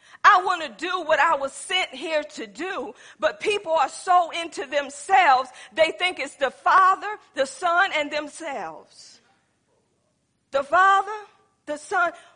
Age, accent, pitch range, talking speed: 40-59, American, 275-350 Hz, 145 wpm